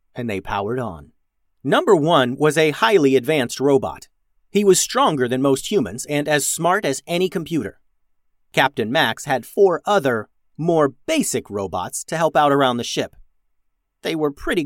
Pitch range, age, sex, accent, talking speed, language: 100-155 Hz, 30-49, male, American, 165 wpm, English